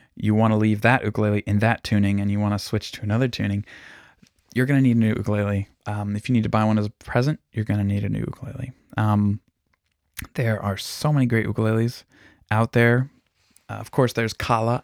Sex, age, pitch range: male, 20-39, 105-115 Hz